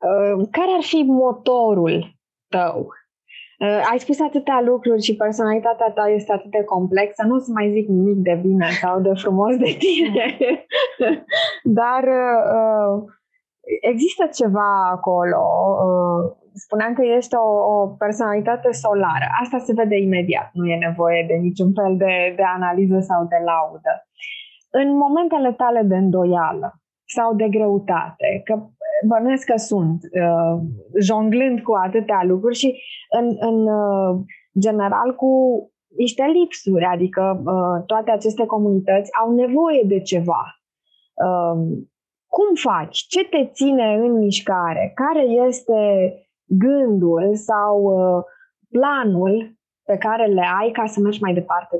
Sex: female